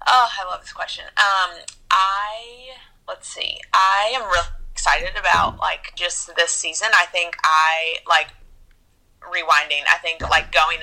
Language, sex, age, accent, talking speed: English, female, 30-49, American, 150 wpm